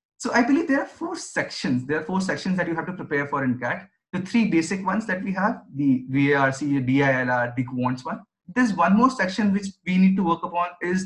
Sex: male